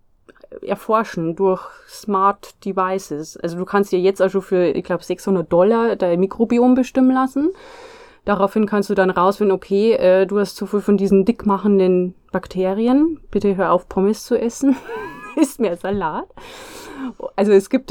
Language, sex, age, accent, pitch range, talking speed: German, female, 20-39, German, 185-230 Hz, 150 wpm